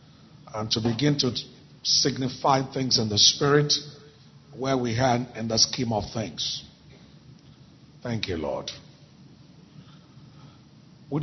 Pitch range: 110-140 Hz